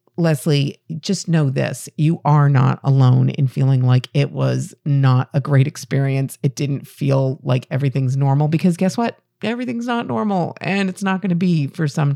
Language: English